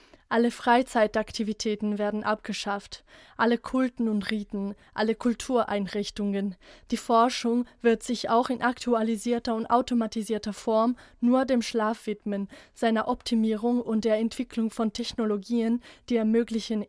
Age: 20-39